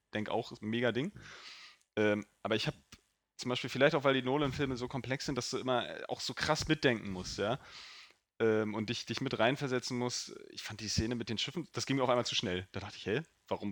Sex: male